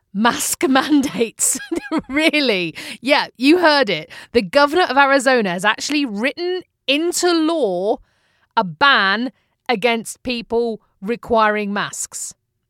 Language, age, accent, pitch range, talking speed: English, 40-59, British, 200-280 Hz, 105 wpm